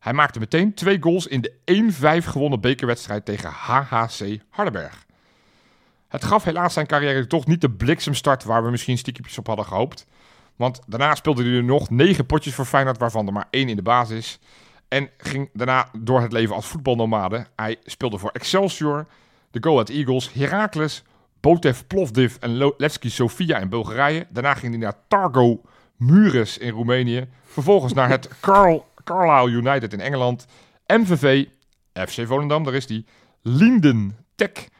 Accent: Belgian